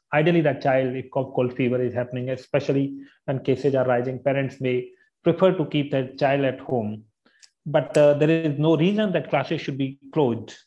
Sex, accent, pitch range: male, Indian, 130-165 Hz